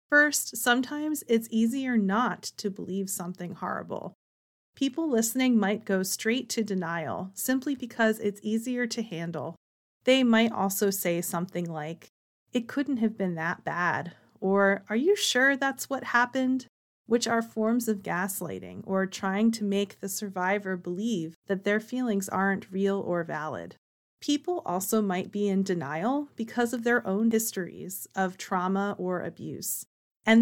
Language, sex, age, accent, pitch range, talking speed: English, female, 30-49, American, 190-235 Hz, 150 wpm